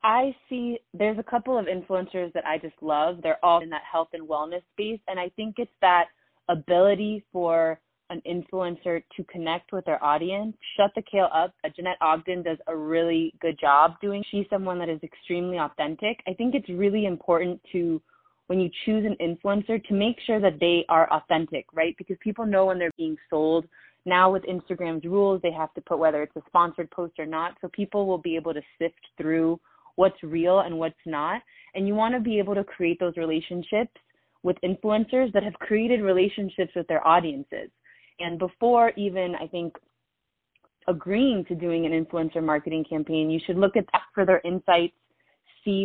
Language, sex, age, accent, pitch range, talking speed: English, female, 20-39, American, 165-200 Hz, 190 wpm